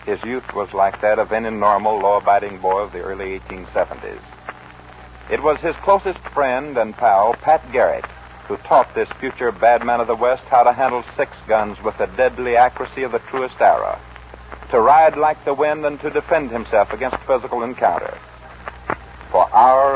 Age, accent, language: 60-79, American, English